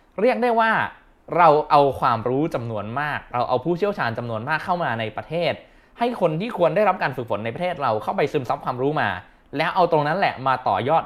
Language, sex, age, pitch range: Thai, male, 20-39, 120-170 Hz